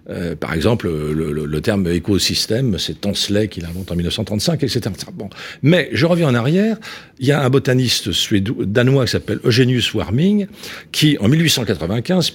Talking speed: 180 wpm